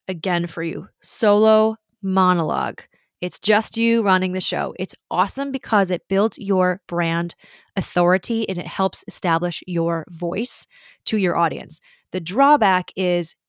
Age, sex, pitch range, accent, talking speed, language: 20-39, female, 170-200 Hz, American, 140 wpm, English